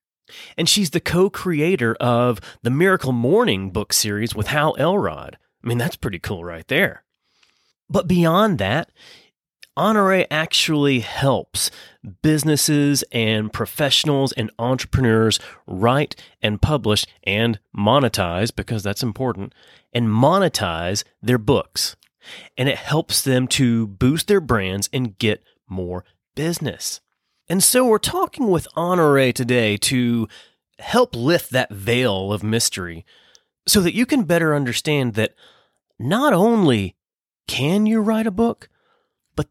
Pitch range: 110-175 Hz